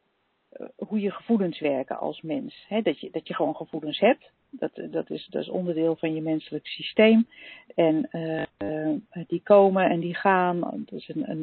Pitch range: 165-220 Hz